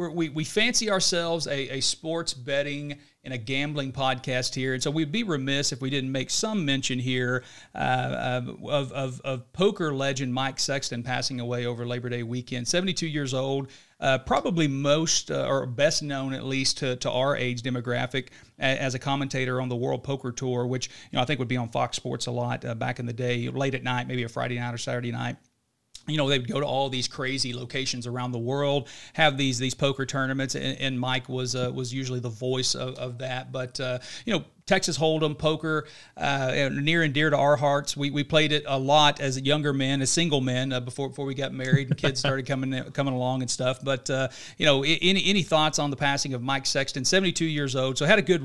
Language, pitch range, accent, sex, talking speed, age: English, 130-145 Hz, American, male, 225 wpm, 40-59